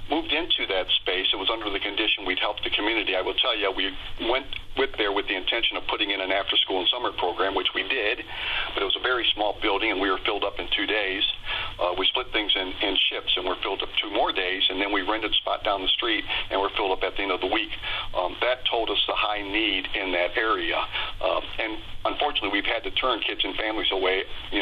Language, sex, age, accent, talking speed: English, male, 40-59, American, 255 wpm